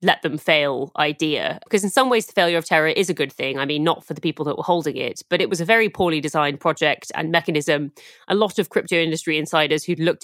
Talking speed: 260 wpm